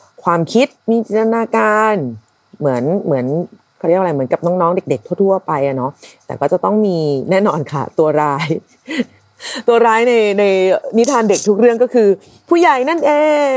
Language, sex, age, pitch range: Thai, female, 30-49, 130-190 Hz